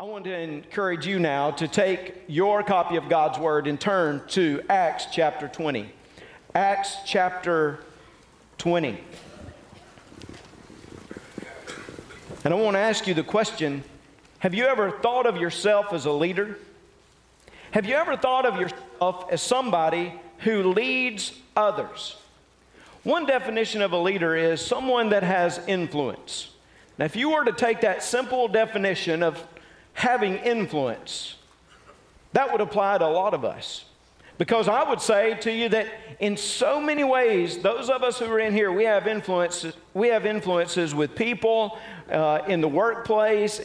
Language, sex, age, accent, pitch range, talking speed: English, male, 50-69, American, 175-225 Hz, 150 wpm